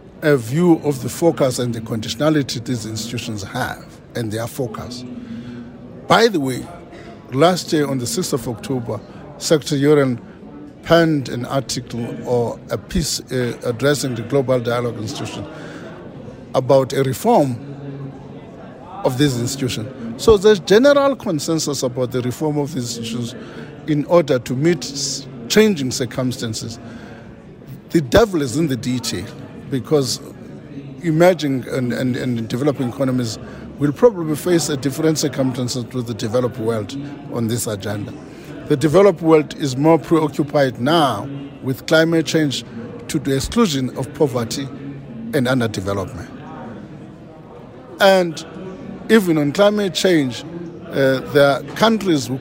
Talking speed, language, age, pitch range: 130 wpm, English, 50-69, 125-160 Hz